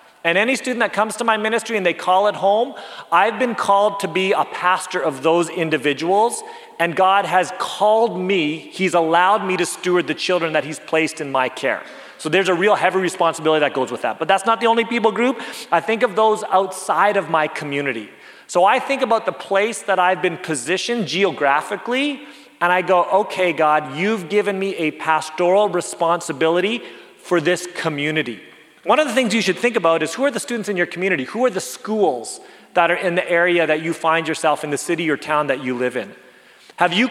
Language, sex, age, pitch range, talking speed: English, male, 30-49, 160-210 Hz, 210 wpm